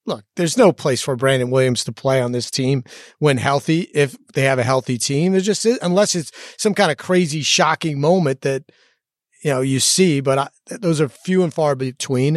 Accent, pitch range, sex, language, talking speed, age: American, 145-195 Hz, male, English, 205 wpm, 30-49